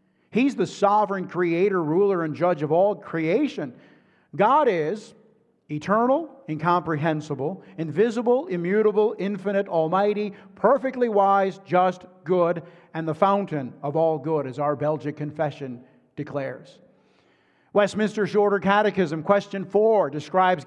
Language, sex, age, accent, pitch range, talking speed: English, male, 50-69, American, 165-215 Hz, 115 wpm